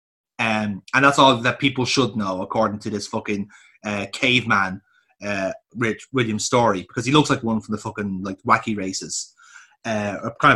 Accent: Irish